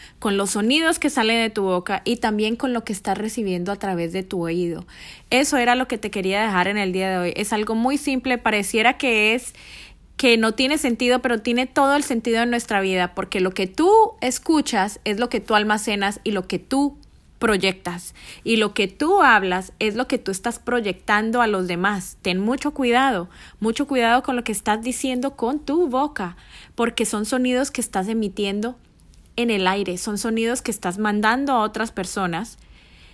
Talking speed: 200 wpm